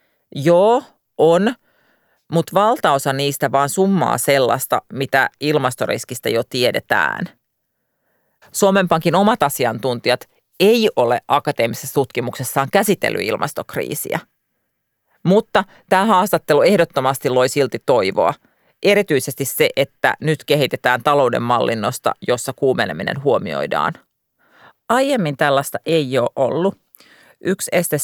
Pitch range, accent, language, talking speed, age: 135-185 Hz, native, Finnish, 95 wpm, 40-59